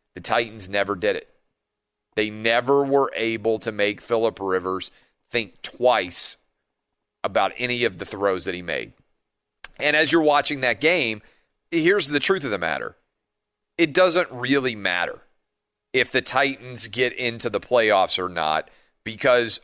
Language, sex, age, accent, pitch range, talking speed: English, male, 40-59, American, 100-130 Hz, 150 wpm